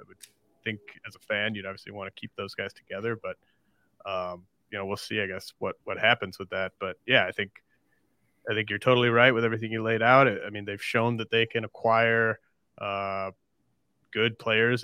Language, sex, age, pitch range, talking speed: English, male, 30-49, 100-115 Hz, 210 wpm